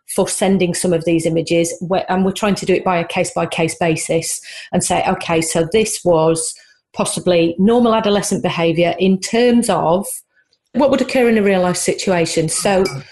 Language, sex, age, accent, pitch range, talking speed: English, female, 40-59, British, 180-215 Hz, 170 wpm